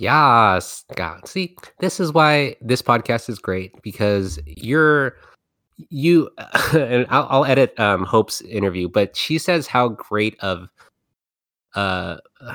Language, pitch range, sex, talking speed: English, 95-115 Hz, male, 130 wpm